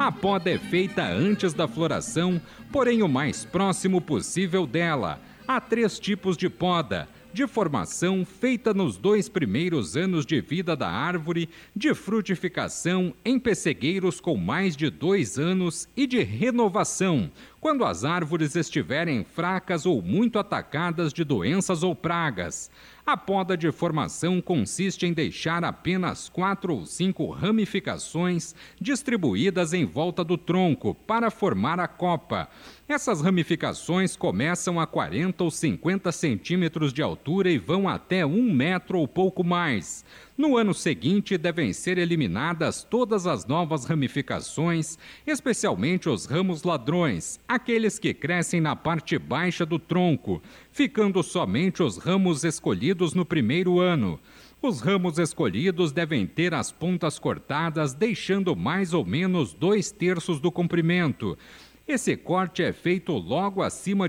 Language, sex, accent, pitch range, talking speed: Portuguese, male, Brazilian, 165-195 Hz, 135 wpm